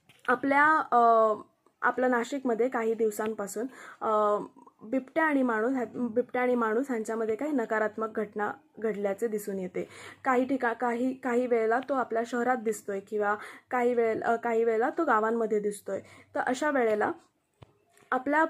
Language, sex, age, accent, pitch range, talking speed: Marathi, female, 20-39, native, 220-260 Hz, 135 wpm